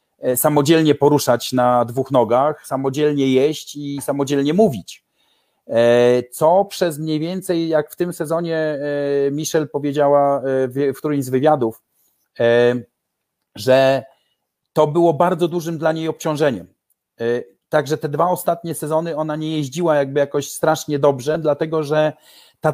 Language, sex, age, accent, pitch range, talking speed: Polish, male, 40-59, native, 140-170 Hz, 125 wpm